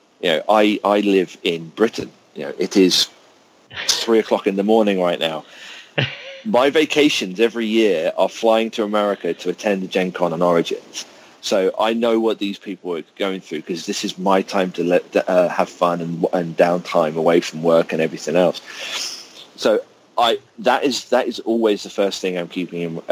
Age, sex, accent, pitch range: 40-59, male, British, 95-125 Hz